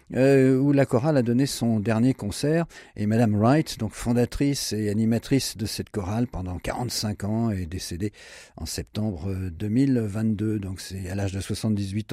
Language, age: French, 50-69